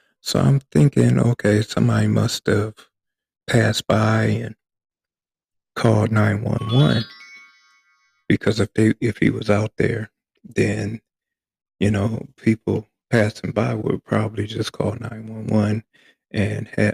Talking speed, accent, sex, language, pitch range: 110 wpm, American, male, English, 105-120 Hz